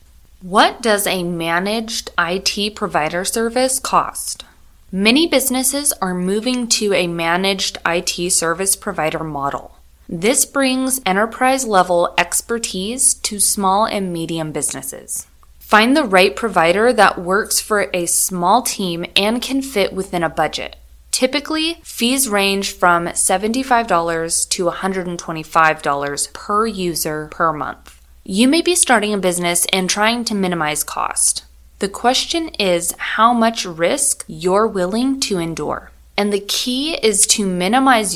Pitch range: 170-235 Hz